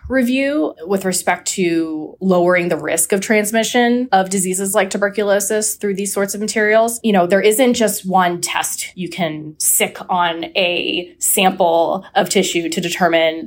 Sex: female